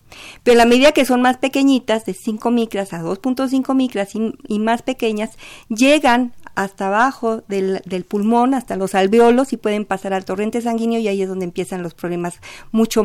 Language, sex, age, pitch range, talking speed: Spanish, female, 50-69, 195-250 Hz, 185 wpm